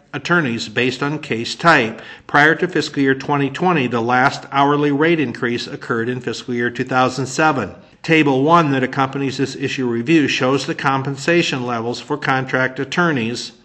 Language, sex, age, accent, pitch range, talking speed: English, male, 50-69, American, 125-150 Hz, 150 wpm